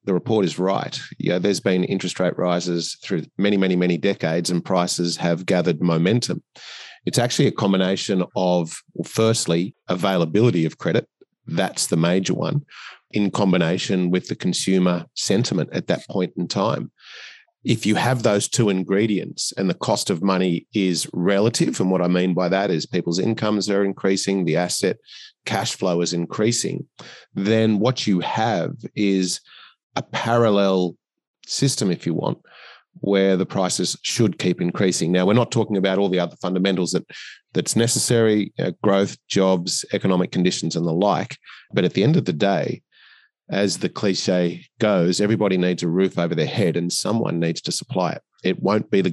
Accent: Australian